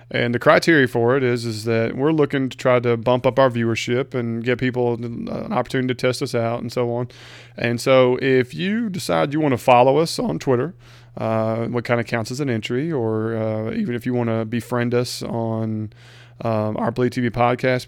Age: 30-49